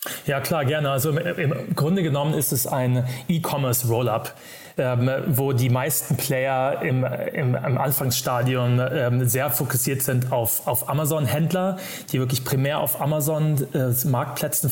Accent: German